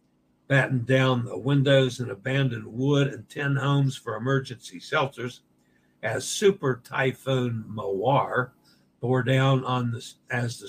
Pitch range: 115-135 Hz